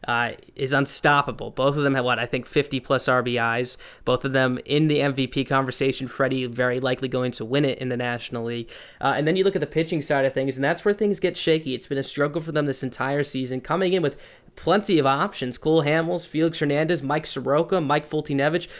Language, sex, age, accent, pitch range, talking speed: English, male, 20-39, American, 130-155 Hz, 225 wpm